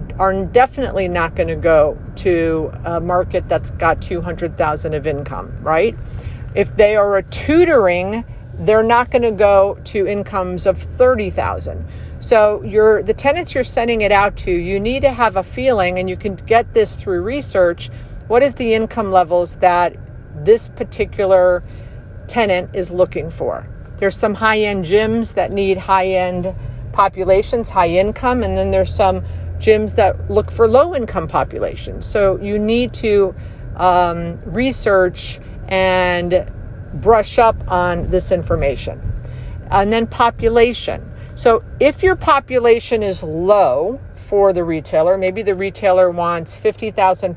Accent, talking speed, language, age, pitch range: American, 145 wpm, English, 50-69, 175-220 Hz